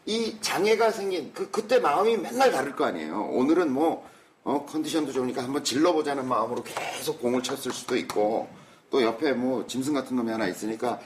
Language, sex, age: Korean, male, 40-59